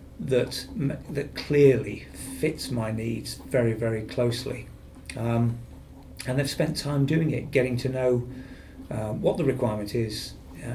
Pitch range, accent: 115-135 Hz, British